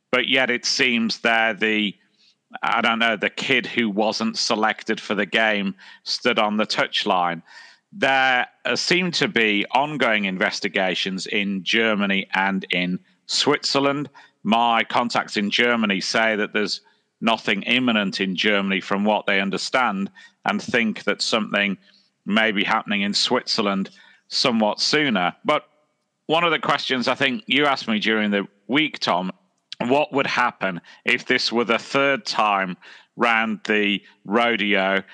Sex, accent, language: male, British, English